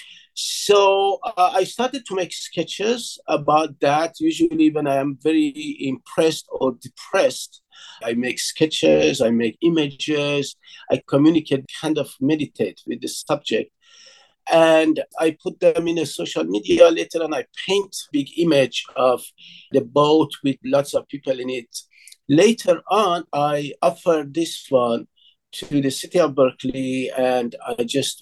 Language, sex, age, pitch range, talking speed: English, male, 50-69, 130-180 Hz, 145 wpm